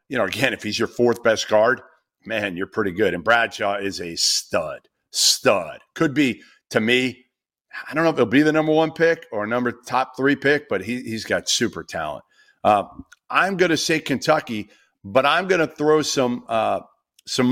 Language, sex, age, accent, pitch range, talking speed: English, male, 50-69, American, 110-140 Hz, 200 wpm